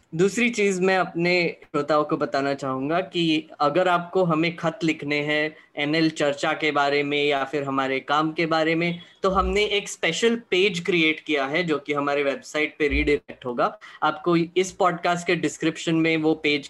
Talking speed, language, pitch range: 180 wpm, Hindi, 145-180 Hz